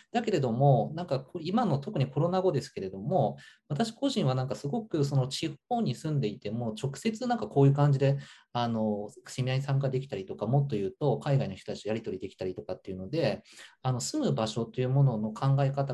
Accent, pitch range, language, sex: native, 120-185 Hz, Japanese, male